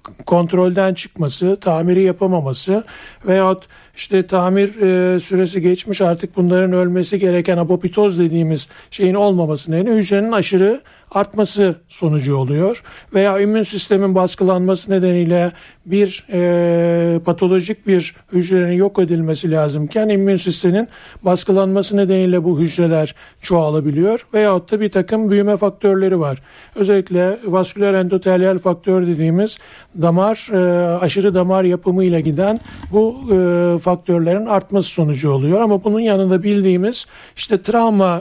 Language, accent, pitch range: Turkish, native, 175-200 Hz